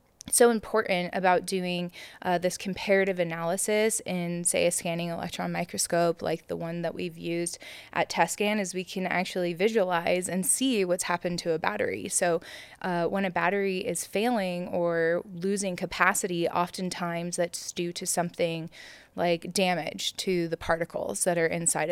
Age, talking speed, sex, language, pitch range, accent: 20-39, 155 wpm, female, English, 170-195 Hz, American